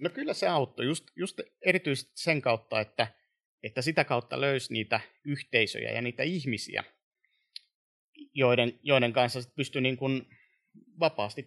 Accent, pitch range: native, 115-155 Hz